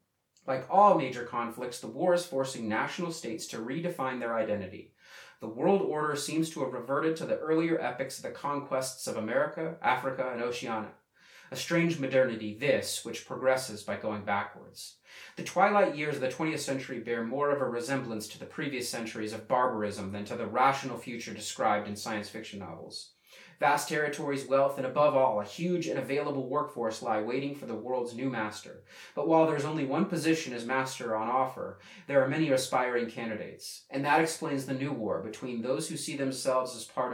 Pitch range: 115-150 Hz